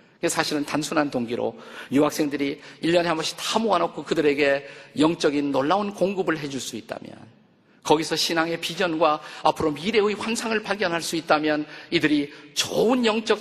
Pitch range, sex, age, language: 130-170 Hz, male, 50-69, Korean